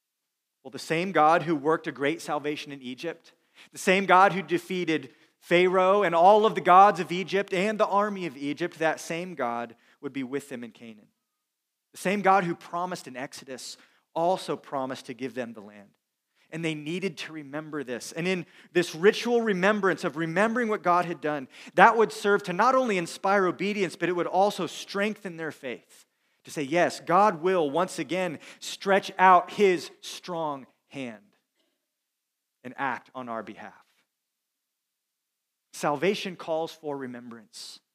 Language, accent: English, American